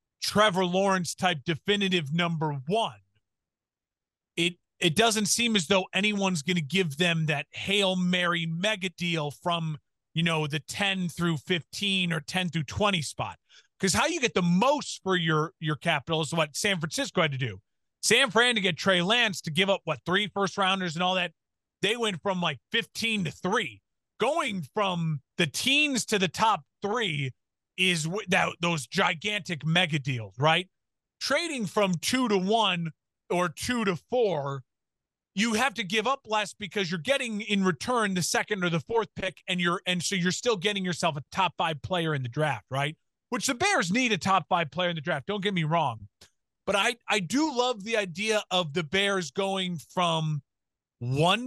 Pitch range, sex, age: 165-205 Hz, male, 30-49